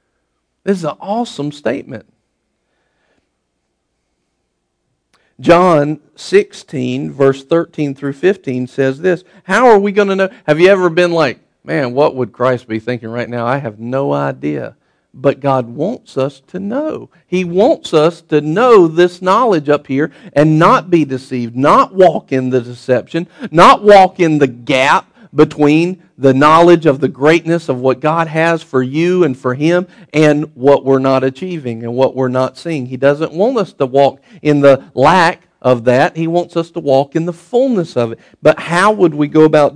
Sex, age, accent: male, 50-69, American